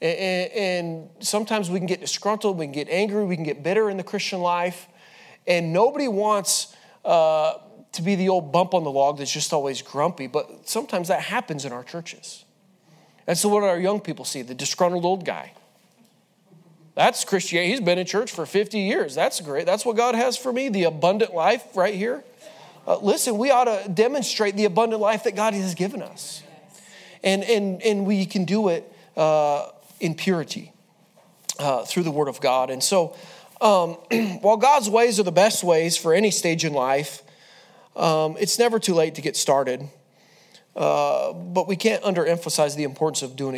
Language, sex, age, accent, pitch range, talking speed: English, male, 30-49, American, 160-210 Hz, 190 wpm